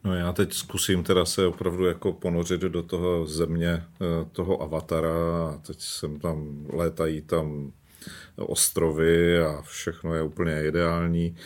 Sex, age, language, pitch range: male, 40-59, Slovak, 85-100 Hz